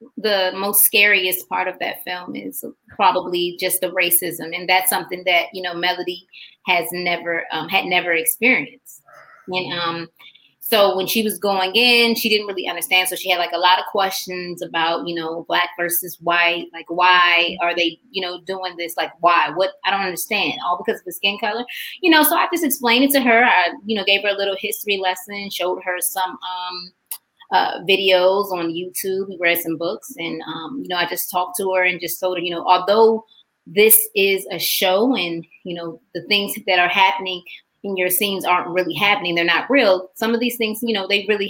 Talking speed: 210 wpm